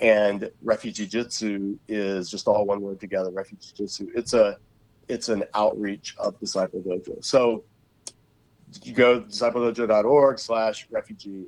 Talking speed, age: 125 wpm, 30-49